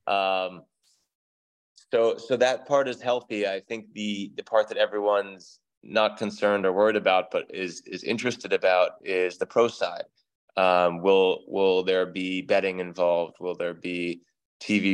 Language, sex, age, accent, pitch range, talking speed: English, male, 20-39, American, 90-110 Hz, 155 wpm